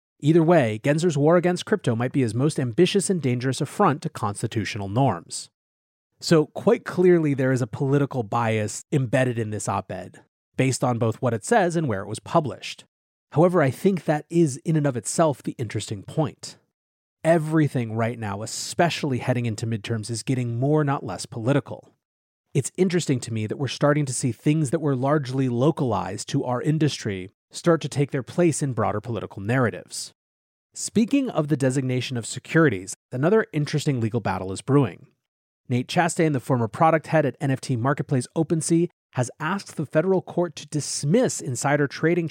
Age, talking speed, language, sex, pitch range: 30-49, 175 wpm, English, male, 115-155 Hz